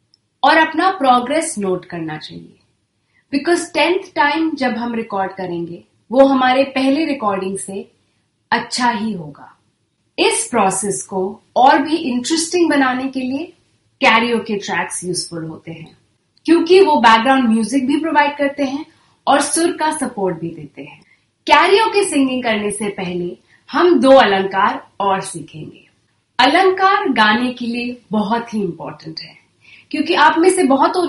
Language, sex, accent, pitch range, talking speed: Gujarati, female, native, 195-300 Hz, 145 wpm